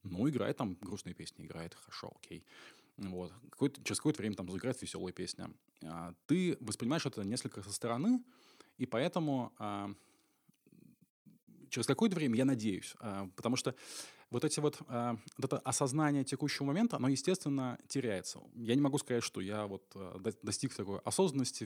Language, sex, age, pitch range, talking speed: Russian, male, 20-39, 105-135 Hz, 155 wpm